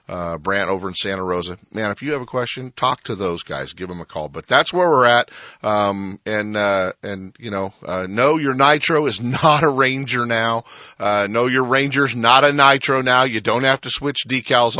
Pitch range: 95-135 Hz